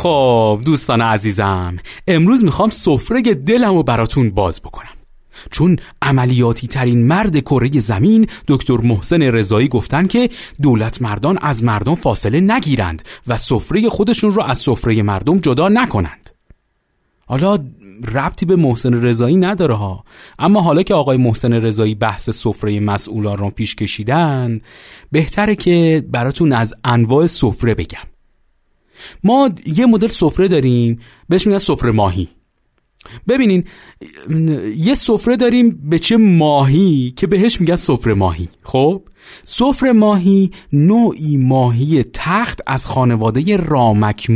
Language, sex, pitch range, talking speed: Persian, male, 115-185 Hz, 125 wpm